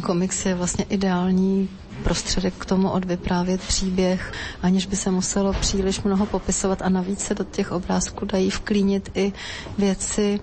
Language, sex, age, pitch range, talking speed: Slovak, female, 30-49, 180-200 Hz, 150 wpm